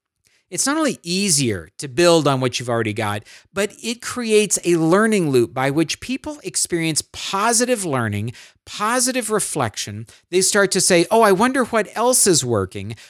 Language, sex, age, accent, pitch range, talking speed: English, male, 50-69, American, 125-195 Hz, 165 wpm